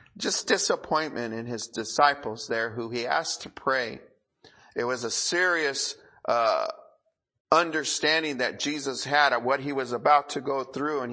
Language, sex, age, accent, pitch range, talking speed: English, male, 40-59, American, 100-125 Hz, 155 wpm